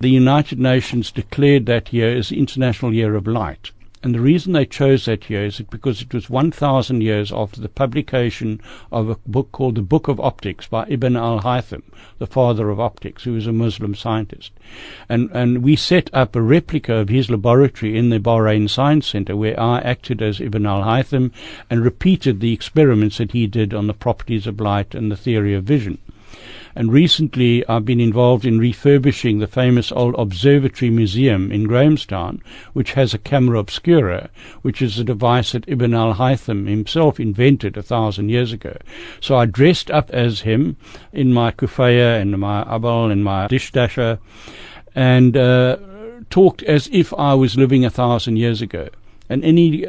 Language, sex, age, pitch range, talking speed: English, male, 60-79, 110-130 Hz, 180 wpm